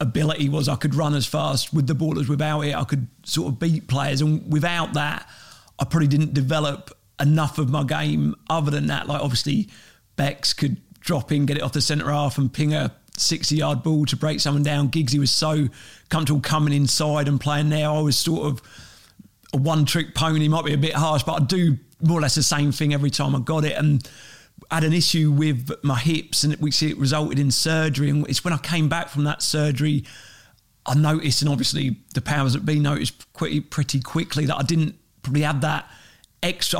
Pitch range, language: 140-155 Hz, English